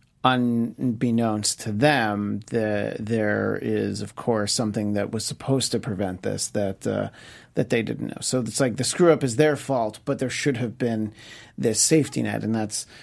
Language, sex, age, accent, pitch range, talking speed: English, male, 40-59, American, 110-140 Hz, 185 wpm